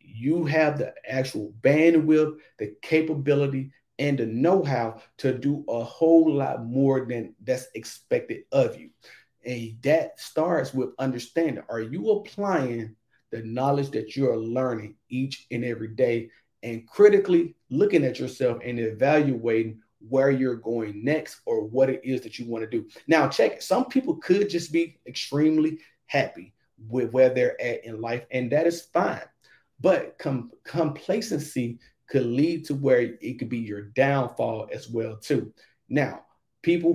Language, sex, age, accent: English, male, 40-59, American